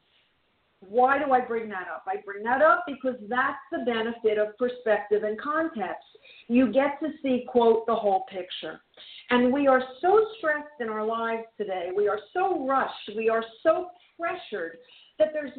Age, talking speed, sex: 50-69, 175 wpm, female